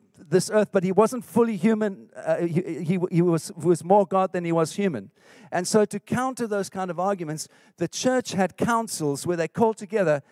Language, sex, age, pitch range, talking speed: English, male, 50-69, 180-220 Hz, 205 wpm